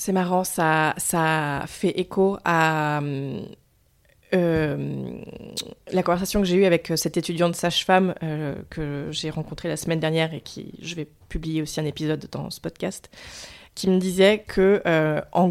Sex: female